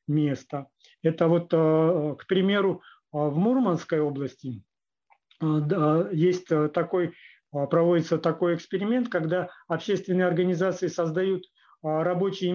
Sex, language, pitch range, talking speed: male, Russian, 150-180 Hz, 70 wpm